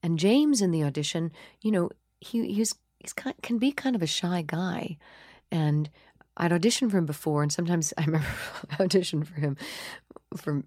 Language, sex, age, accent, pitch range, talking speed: English, female, 50-69, American, 140-185 Hz, 170 wpm